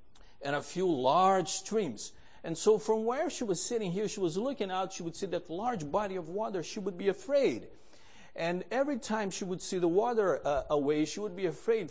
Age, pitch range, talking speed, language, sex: 50-69, 165-205 Hz, 215 wpm, English, male